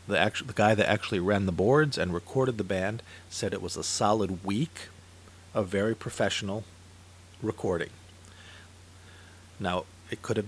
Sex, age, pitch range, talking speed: male, 40-59, 90-115 Hz, 145 wpm